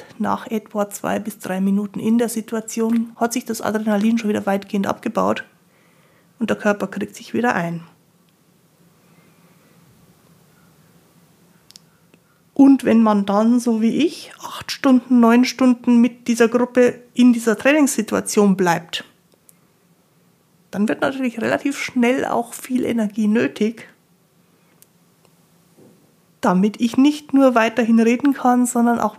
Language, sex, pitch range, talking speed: German, female, 185-240 Hz, 125 wpm